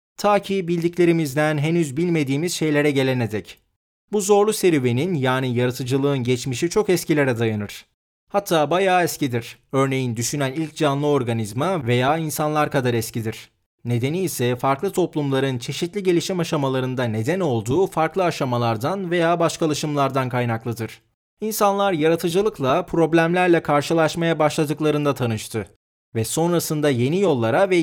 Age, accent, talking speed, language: 30-49, native, 115 wpm, Turkish